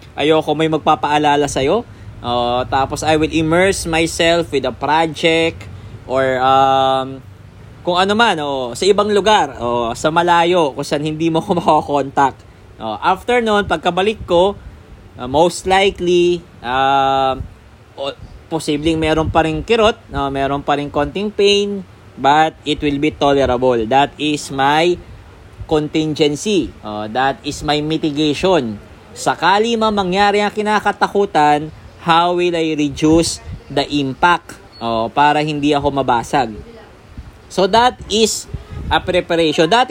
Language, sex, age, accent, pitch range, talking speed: English, male, 20-39, Filipino, 135-180 Hz, 130 wpm